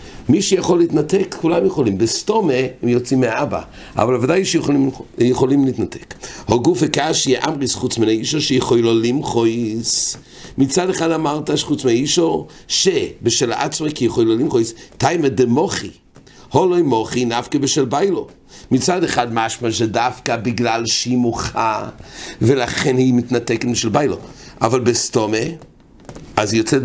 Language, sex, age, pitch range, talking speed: English, male, 60-79, 120-165 Hz, 125 wpm